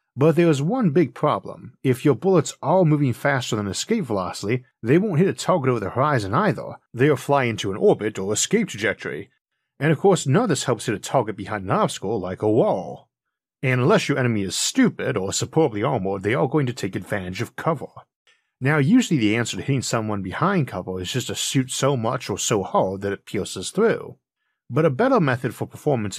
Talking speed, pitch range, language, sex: 215 wpm, 105-145 Hz, English, male